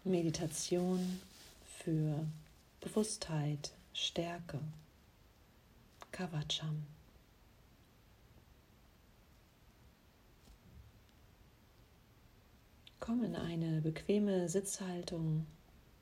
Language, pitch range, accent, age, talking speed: German, 155-180 Hz, German, 40-59, 35 wpm